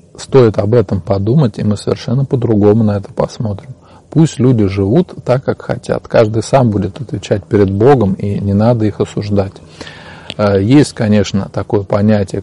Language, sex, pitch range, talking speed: Russian, male, 100-115 Hz, 155 wpm